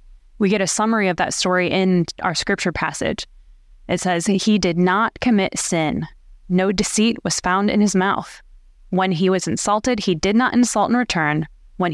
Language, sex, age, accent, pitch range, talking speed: English, female, 20-39, American, 170-215 Hz, 180 wpm